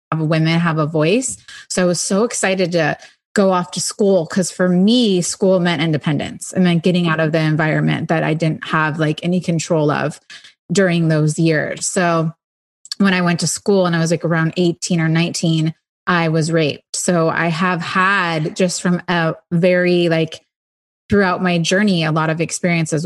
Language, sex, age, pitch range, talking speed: English, female, 20-39, 165-190 Hz, 185 wpm